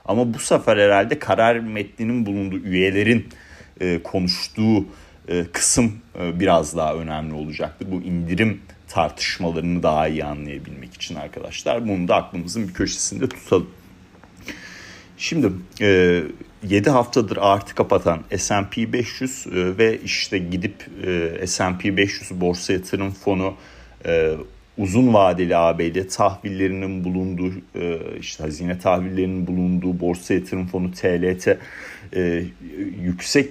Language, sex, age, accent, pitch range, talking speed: Turkish, male, 40-59, native, 90-100 Hz, 115 wpm